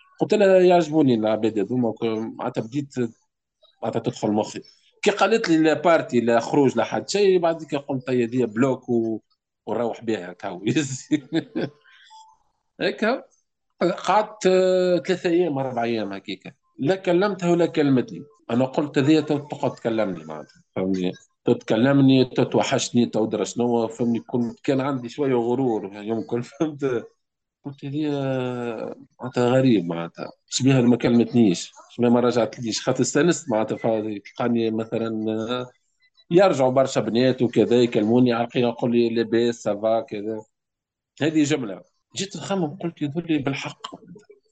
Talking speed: 120 wpm